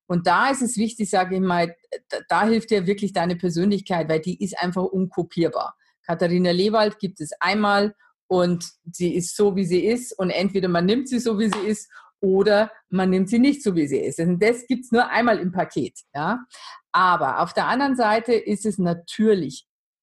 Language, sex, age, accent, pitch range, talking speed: German, female, 50-69, German, 170-215 Hz, 190 wpm